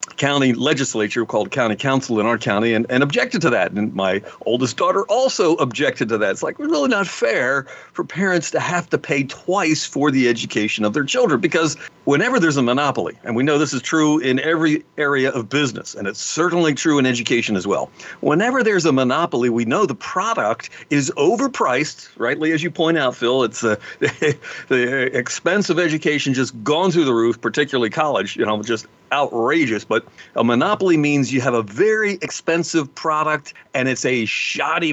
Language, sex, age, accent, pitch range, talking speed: English, male, 50-69, American, 120-160 Hz, 190 wpm